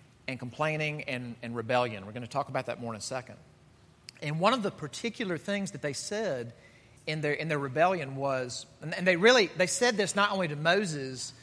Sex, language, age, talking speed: male, English, 40-59, 210 wpm